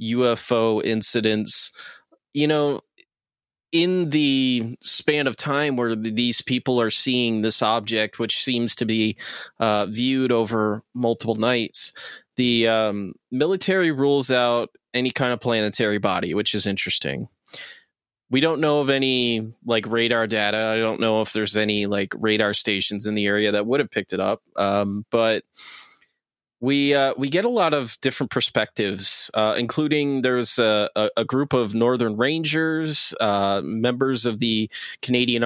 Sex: male